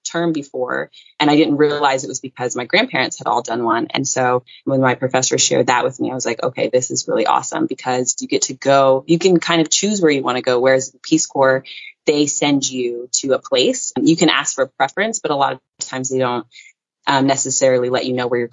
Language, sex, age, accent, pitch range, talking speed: English, female, 20-39, American, 130-160 Hz, 245 wpm